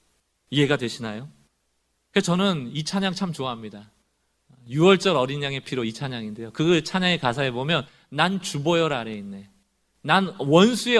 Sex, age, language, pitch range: male, 40-59, Korean, 115-170 Hz